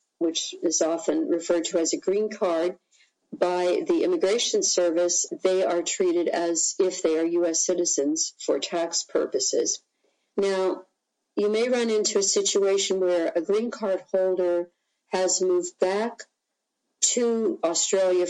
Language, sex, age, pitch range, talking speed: English, female, 50-69, 165-205 Hz, 140 wpm